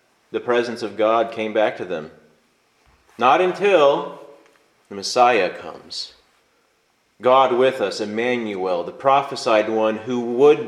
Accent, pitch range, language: American, 125-170 Hz, English